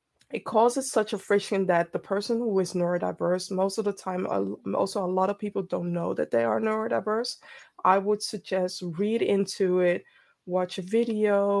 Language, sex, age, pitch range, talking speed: English, female, 20-39, 180-225 Hz, 180 wpm